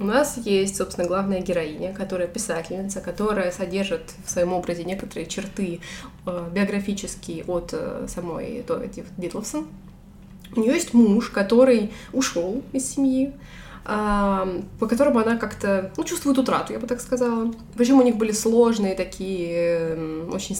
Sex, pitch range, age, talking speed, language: female, 190-245 Hz, 20-39, 130 wpm, Russian